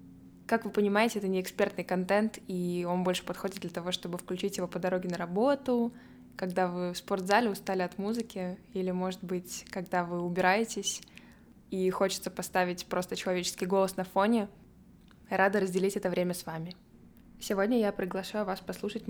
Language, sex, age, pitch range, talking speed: Russian, female, 20-39, 180-200 Hz, 165 wpm